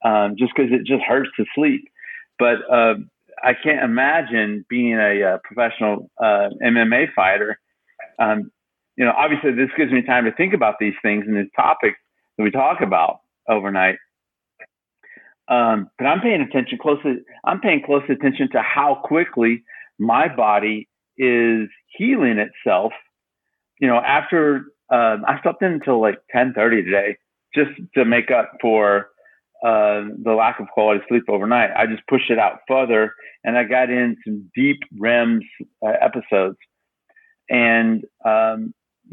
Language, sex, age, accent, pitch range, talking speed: English, male, 50-69, American, 110-135 Hz, 150 wpm